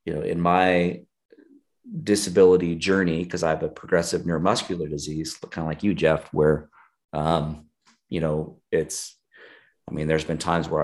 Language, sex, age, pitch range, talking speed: English, male, 30-49, 80-95 Hz, 165 wpm